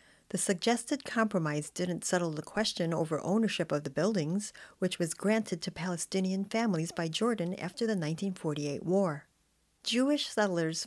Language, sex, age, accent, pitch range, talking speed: English, female, 40-59, American, 165-205 Hz, 145 wpm